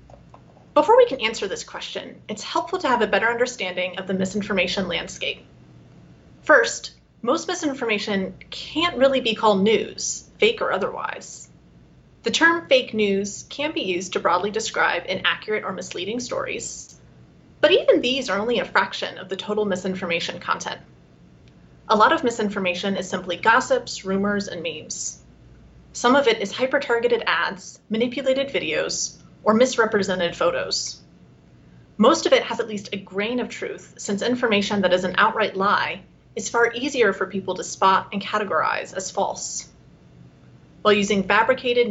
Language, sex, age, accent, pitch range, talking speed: English, female, 30-49, American, 190-265 Hz, 150 wpm